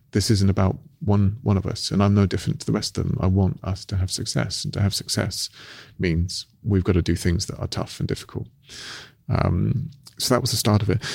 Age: 30-49